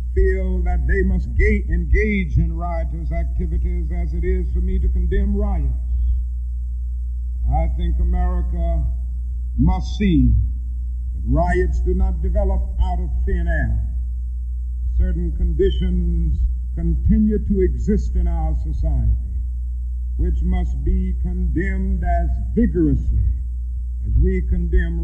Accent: American